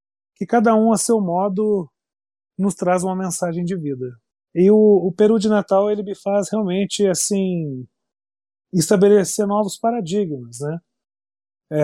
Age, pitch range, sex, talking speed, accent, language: 30-49, 150-205 Hz, male, 140 wpm, Brazilian, Portuguese